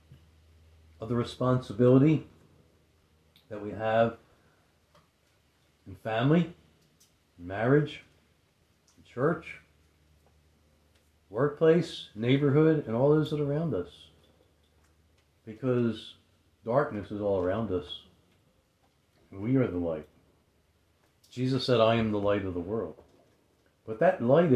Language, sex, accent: English, male, American